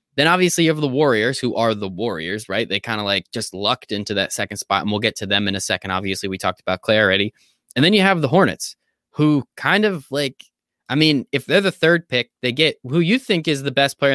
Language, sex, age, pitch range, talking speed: English, male, 20-39, 125-160 Hz, 260 wpm